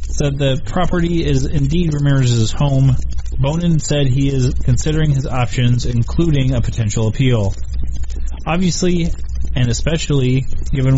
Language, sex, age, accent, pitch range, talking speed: English, male, 30-49, American, 110-145 Hz, 120 wpm